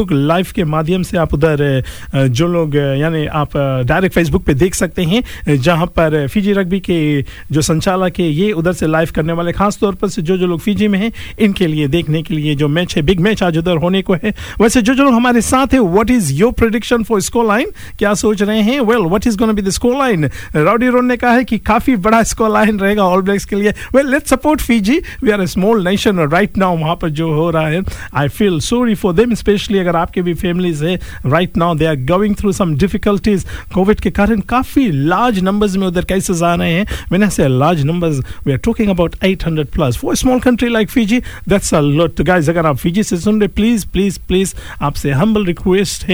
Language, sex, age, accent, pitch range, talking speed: Hindi, male, 50-69, native, 165-215 Hz, 95 wpm